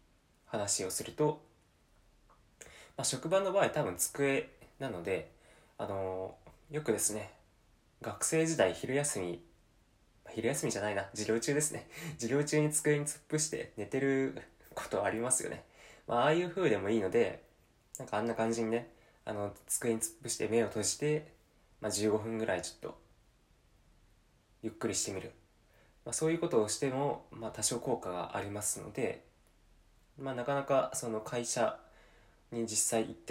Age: 20-39